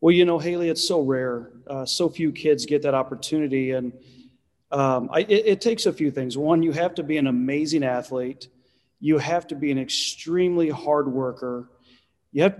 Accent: American